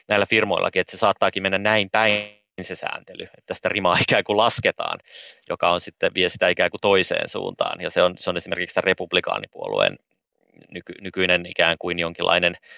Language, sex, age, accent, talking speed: Finnish, male, 30-49, native, 180 wpm